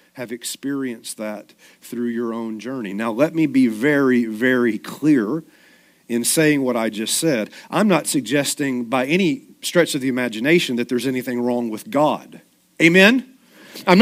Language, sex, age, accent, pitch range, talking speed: English, male, 40-59, American, 165-225 Hz, 160 wpm